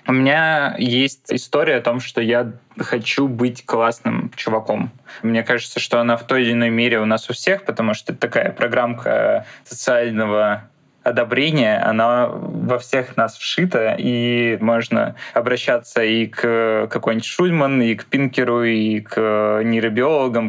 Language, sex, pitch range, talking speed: Russian, male, 115-125 Hz, 145 wpm